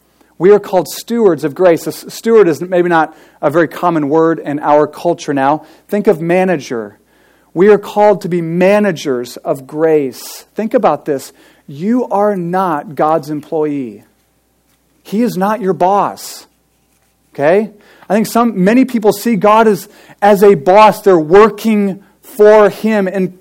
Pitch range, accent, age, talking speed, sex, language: 165-210 Hz, American, 40-59, 155 wpm, male, English